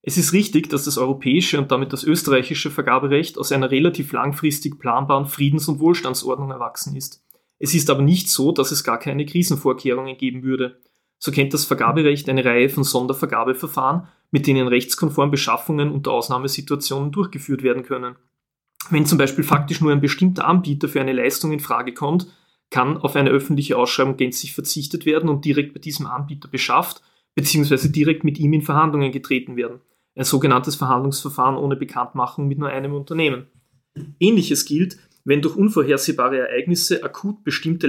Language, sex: German, male